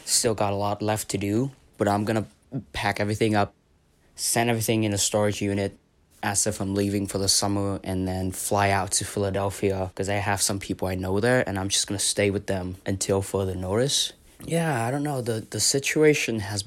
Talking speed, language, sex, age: 215 wpm, English, male, 20-39